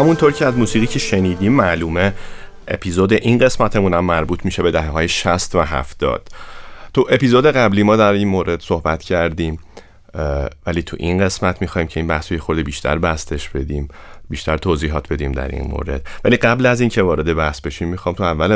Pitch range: 75-95 Hz